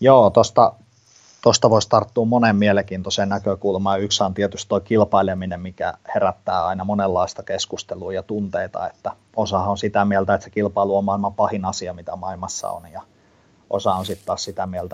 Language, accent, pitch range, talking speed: Finnish, native, 95-110 Hz, 165 wpm